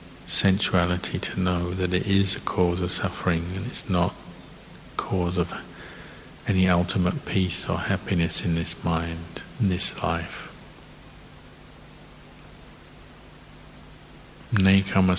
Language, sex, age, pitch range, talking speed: English, male, 50-69, 90-95 Hz, 105 wpm